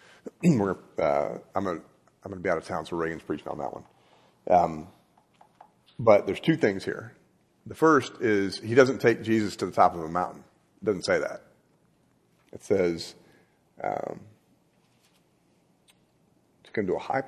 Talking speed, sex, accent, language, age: 165 wpm, male, American, English, 40-59